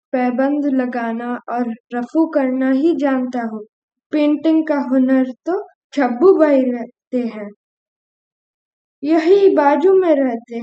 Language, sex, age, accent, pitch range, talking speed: Hindi, female, 20-39, native, 235-300 Hz, 115 wpm